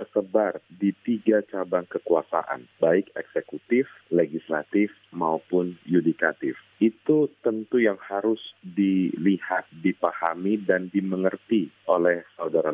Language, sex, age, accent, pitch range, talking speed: Indonesian, male, 40-59, native, 85-110 Hz, 95 wpm